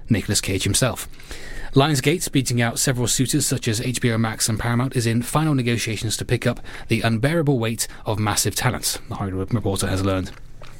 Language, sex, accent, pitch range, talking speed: English, male, British, 105-125 Hz, 180 wpm